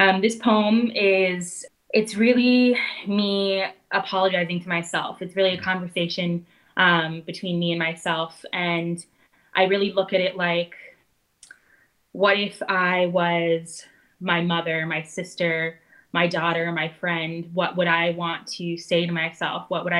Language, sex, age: English, female, 20-39